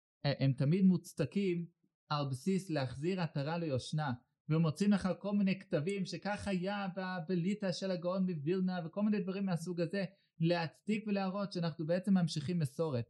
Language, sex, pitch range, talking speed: Hebrew, male, 140-180 Hz, 135 wpm